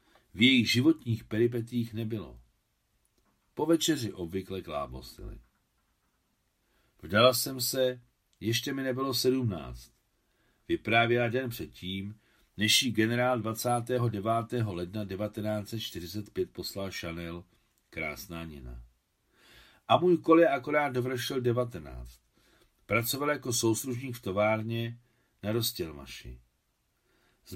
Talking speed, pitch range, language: 95 wpm, 95-125 Hz, Czech